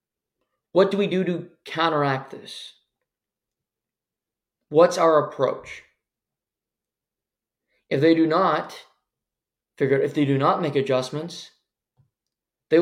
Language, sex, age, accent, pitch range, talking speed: English, male, 20-39, American, 140-165 Hz, 110 wpm